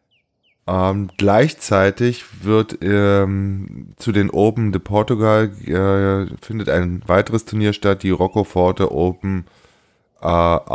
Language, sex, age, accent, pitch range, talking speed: German, male, 20-39, German, 95-110 Hz, 105 wpm